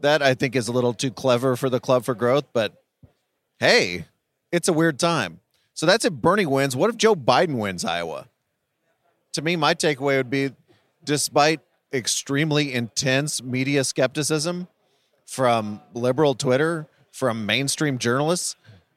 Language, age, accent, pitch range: English, 30-49, American, 125-150 Hz